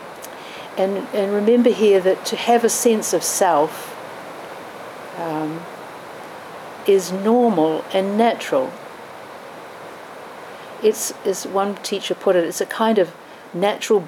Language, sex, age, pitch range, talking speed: English, female, 50-69, 165-205 Hz, 115 wpm